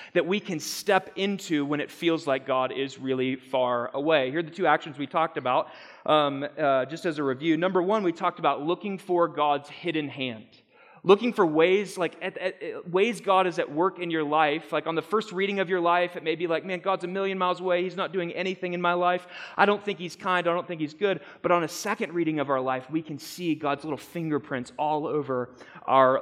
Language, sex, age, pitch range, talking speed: English, male, 30-49, 130-175 Hz, 240 wpm